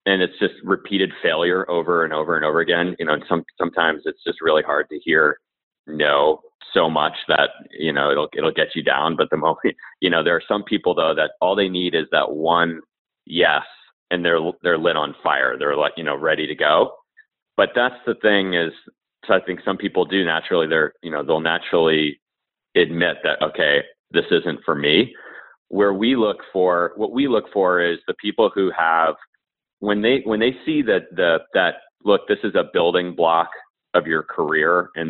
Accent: American